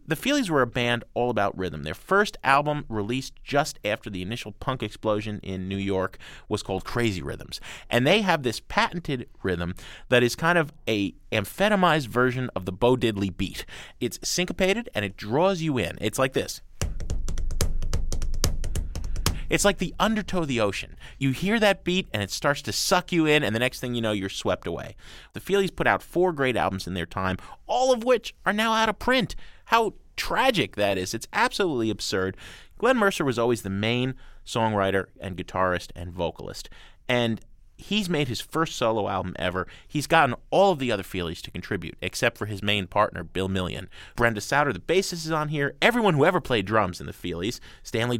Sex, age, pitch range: male, 30-49, 95-145 Hz